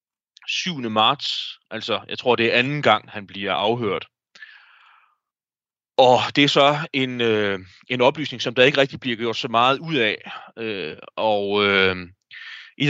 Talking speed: 145 wpm